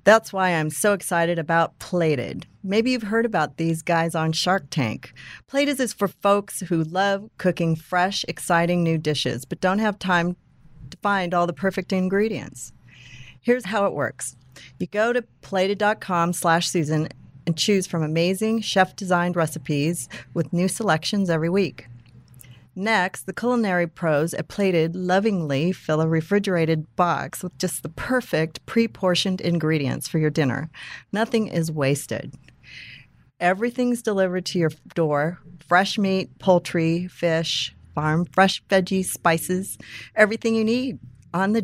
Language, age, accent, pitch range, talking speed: English, 40-59, American, 155-190 Hz, 140 wpm